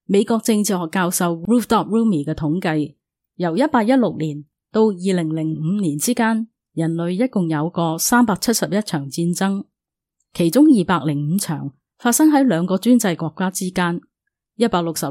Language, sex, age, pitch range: Chinese, female, 30-49, 155-220 Hz